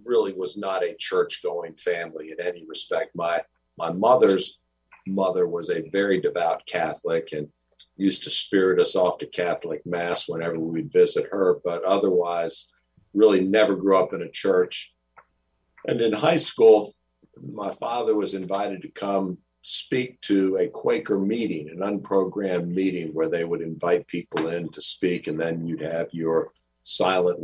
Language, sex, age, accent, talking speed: English, male, 50-69, American, 155 wpm